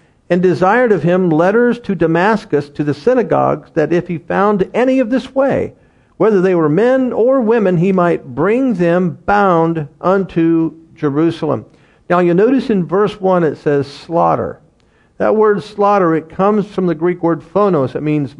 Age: 50-69